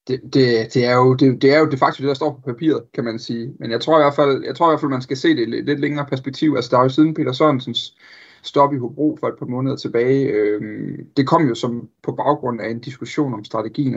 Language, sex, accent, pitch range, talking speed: Danish, male, native, 120-145 Hz, 270 wpm